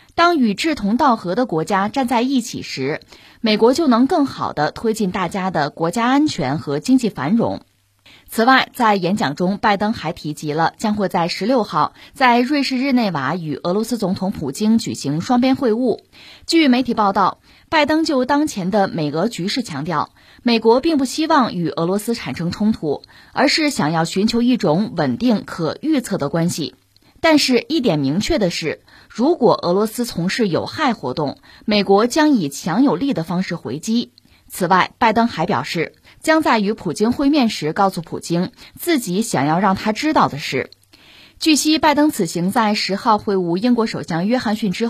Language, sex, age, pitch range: Chinese, female, 20-39, 170-255 Hz